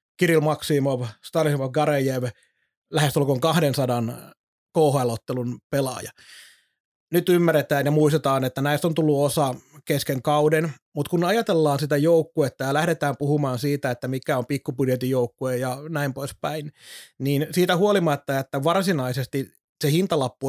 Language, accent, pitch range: Finnish, native, 130-160 Hz